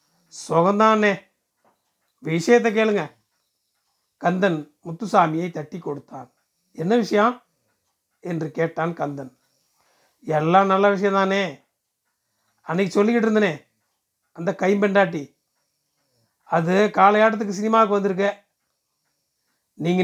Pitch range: 160-215 Hz